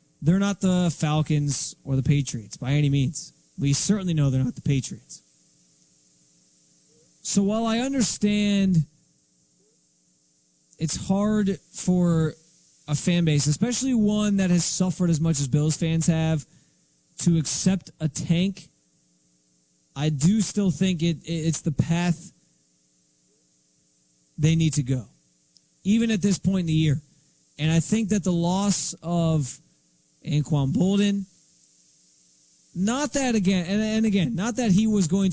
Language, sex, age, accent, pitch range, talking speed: English, male, 20-39, American, 145-190 Hz, 135 wpm